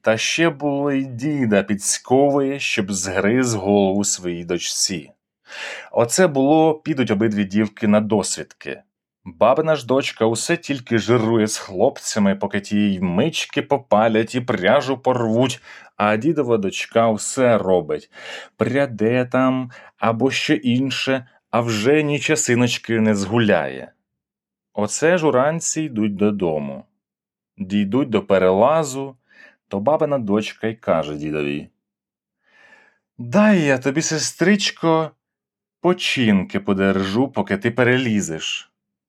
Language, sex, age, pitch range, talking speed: Ukrainian, male, 30-49, 105-145 Hz, 110 wpm